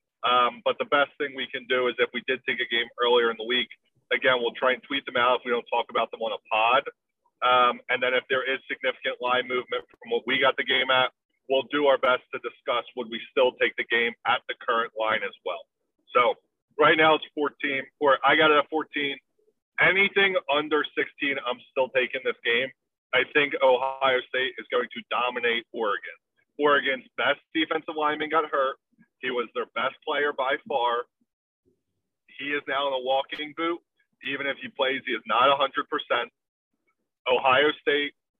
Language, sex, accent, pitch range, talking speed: English, male, American, 125-155 Hz, 200 wpm